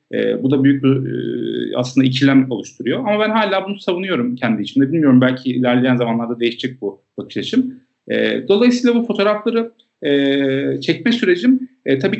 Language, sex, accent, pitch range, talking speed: Turkish, male, native, 135-195 Hz, 160 wpm